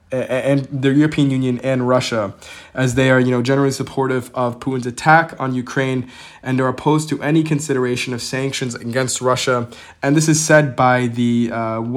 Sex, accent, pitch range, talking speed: male, American, 125-140 Hz, 175 wpm